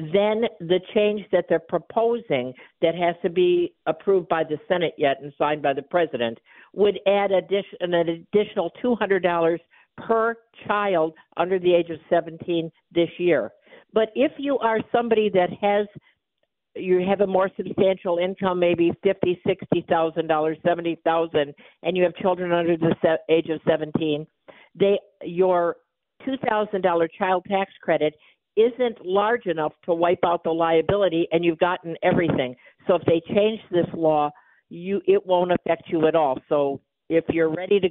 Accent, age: American, 50-69